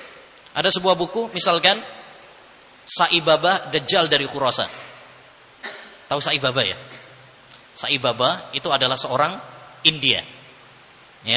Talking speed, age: 90 wpm, 20-39